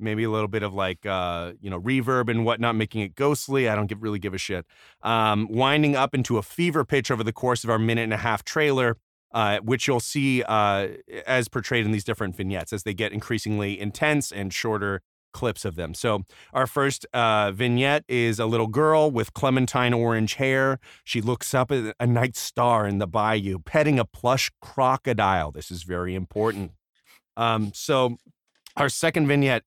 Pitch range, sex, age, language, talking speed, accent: 105-130 Hz, male, 30-49, English, 185 wpm, American